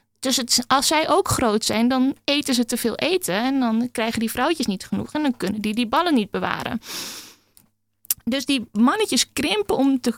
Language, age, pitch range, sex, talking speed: Dutch, 20-39, 215-270 Hz, female, 200 wpm